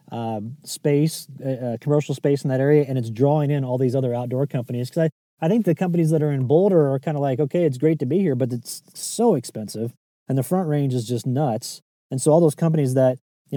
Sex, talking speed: male, 245 wpm